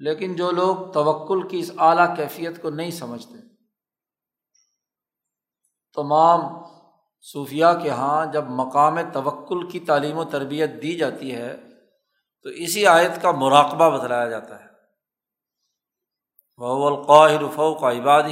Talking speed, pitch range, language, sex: 125 wpm, 140-170 Hz, Urdu, male